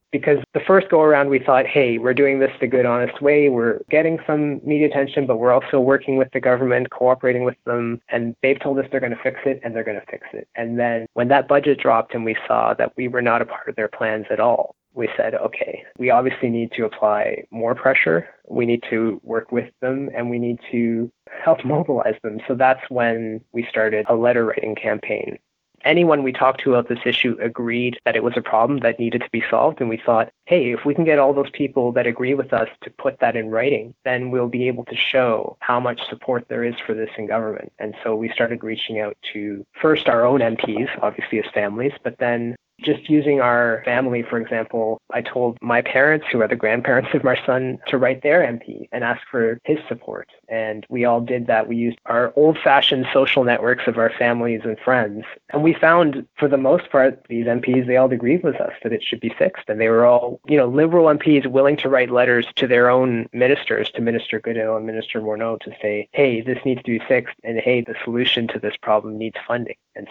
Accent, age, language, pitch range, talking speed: American, 20-39, English, 115-135 Hz, 230 wpm